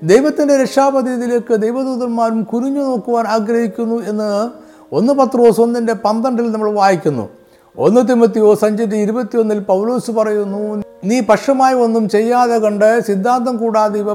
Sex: male